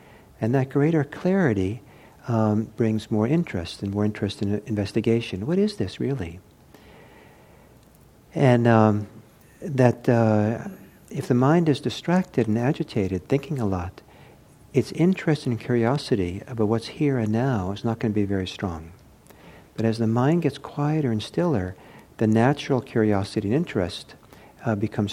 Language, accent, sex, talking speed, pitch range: English, American, male, 145 wpm, 105-140 Hz